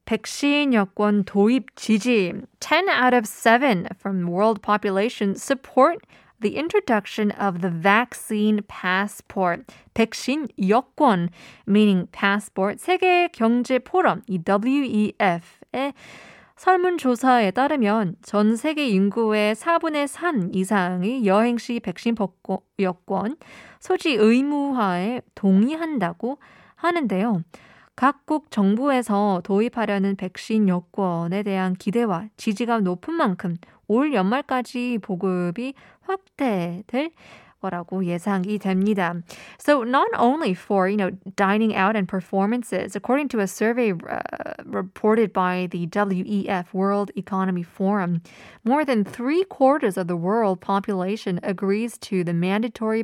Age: 20-39